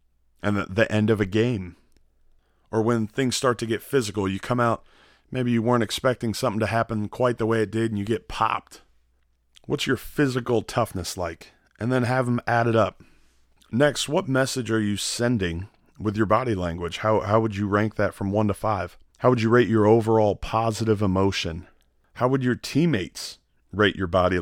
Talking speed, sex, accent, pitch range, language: 195 wpm, male, American, 90-120 Hz, English